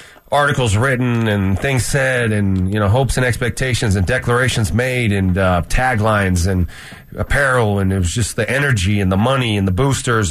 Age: 30-49